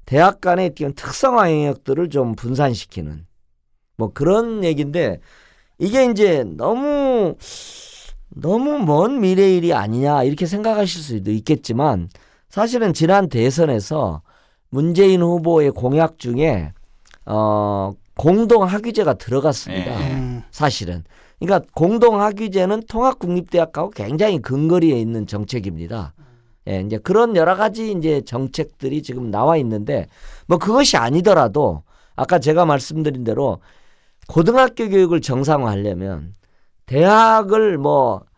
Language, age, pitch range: Korean, 40-59, 115-185 Hz